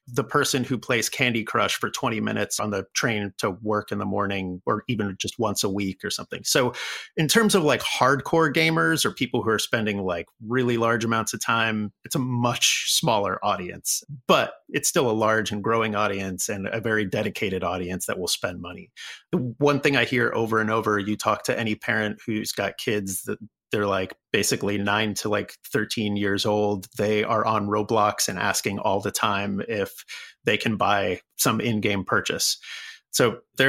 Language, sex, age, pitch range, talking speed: English, male, 30-49, 105-135 Hz, 195 wpm